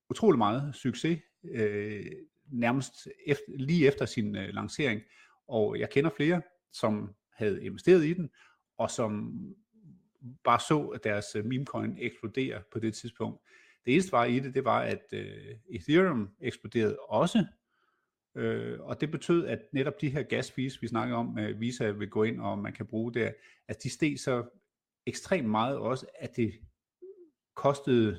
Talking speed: 165 wpm